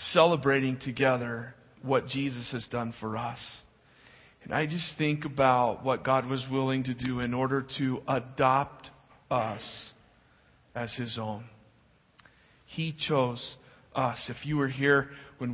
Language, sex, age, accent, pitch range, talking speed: English, male, 40-59, American, 120-140 Hz, 135 wpm